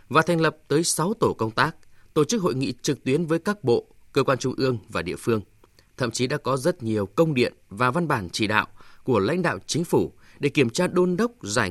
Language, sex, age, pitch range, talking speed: Vietnamese, male, 20-39, 105-160 Hz, 245 wpm